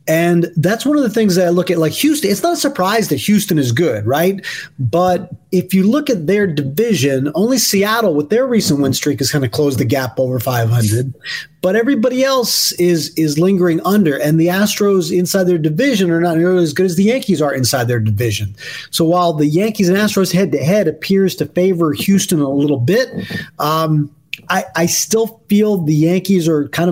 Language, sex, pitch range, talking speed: English, male, 145-185 Hz, 205 wpm